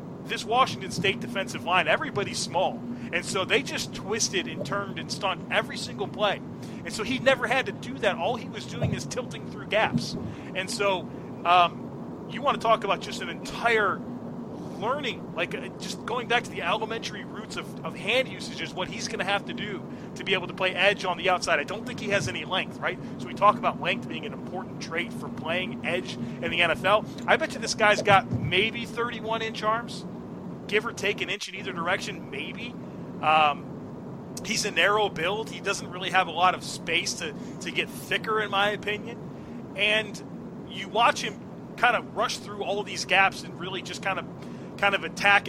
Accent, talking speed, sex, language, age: American, 210 wpm, male, English, 30-49